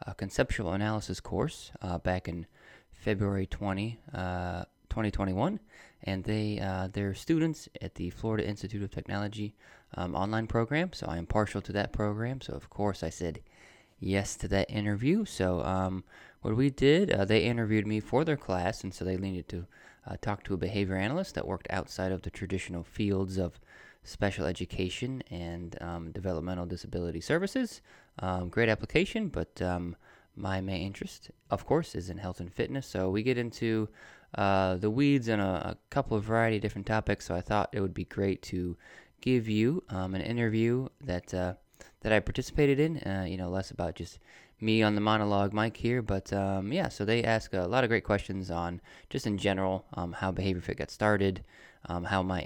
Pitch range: 90-110 Hz